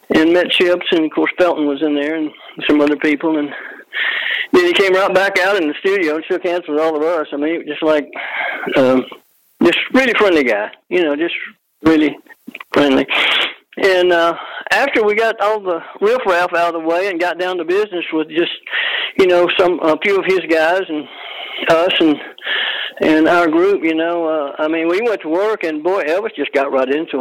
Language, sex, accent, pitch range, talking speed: English, male, American, 155-220 Hz, 210 wpm